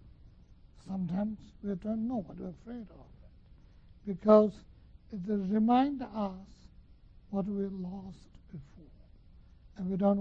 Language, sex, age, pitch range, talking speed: English, male, 60-79, 190-235 Hz, 120 wpm